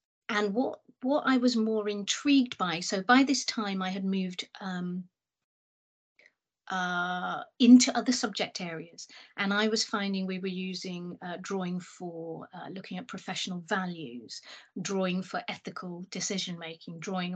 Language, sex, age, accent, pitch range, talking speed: English, female, 40-59, British, 180-230 Hz, 145 wpm